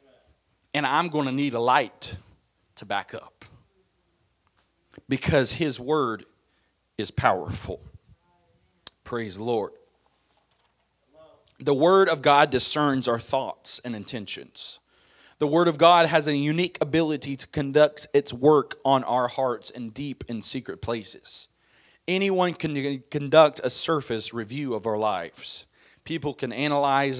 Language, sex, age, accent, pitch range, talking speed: English, male, 40-59, American, 120-155 Hz, 130 wpm